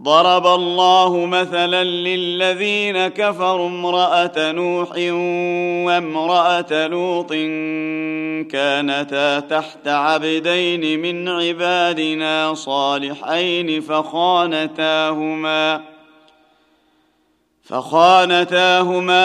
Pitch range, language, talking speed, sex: 155-175 Hz, Arabic, 50 wpm, male